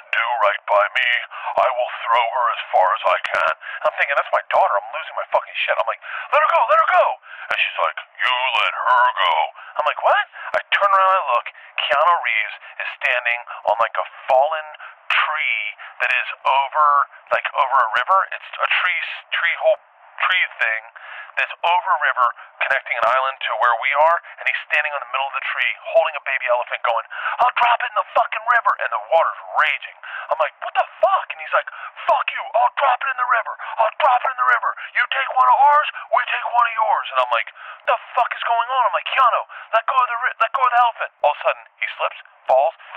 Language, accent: English, American